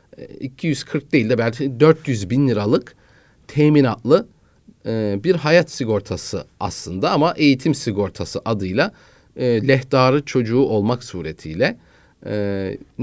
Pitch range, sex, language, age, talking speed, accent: 110-150 Hz, male, Turkish, 40-59, 105 wpm, native